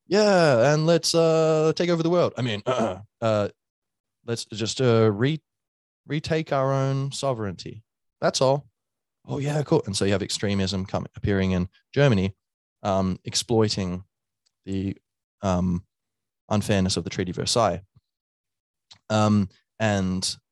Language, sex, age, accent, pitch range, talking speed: English, male, 20-39, Australian, 90-115 Hz, 135 wpm